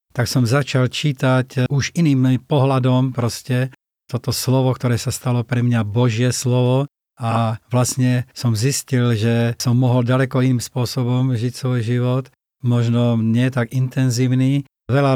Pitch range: 120-130 Hz